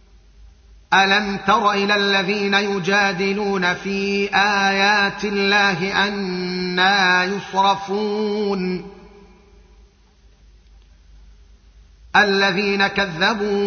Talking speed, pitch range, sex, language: 55 wpm, 180-200 Hz, male, Arabic